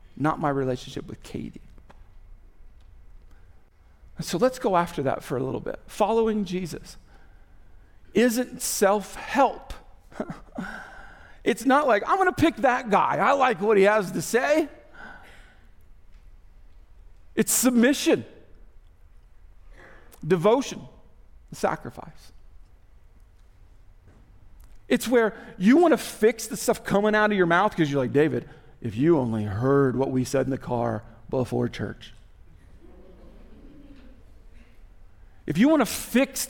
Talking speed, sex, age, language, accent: 115 wpm, male, 40-59, English, American